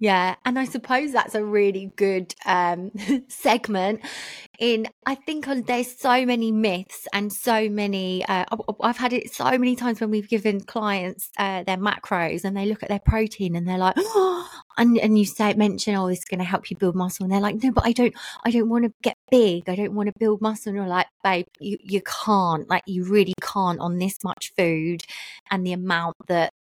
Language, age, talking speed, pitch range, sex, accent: English, 20-39, 220 wpm, 180-220 Hz, female, British